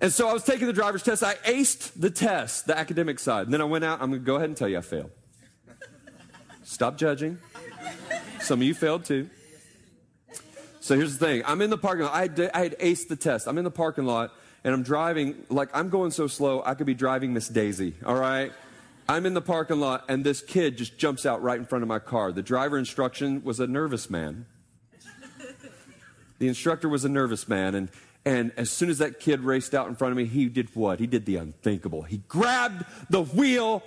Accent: American